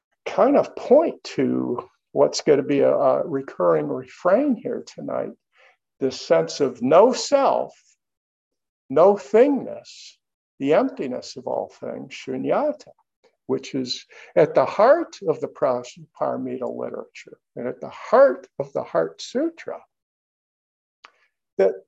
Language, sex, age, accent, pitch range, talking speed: English, male, 50-69, American, 200-270 Hz, 120 wpm